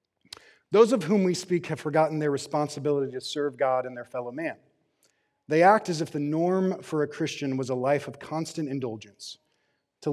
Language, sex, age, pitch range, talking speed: English, male, 30-49, 140-175 Hz, 190 wpm